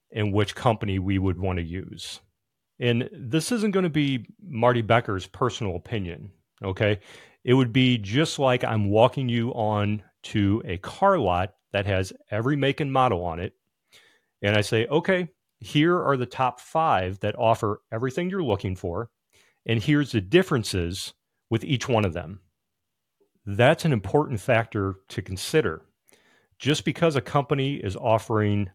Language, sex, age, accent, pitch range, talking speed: English, male, 40-59, American, 100-140 Hz, 160 wpm